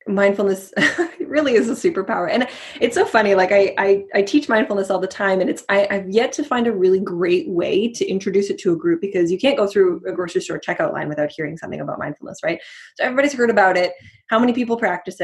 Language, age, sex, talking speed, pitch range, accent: English, 20-39, female, 235 wpm, 185-250 Hz, American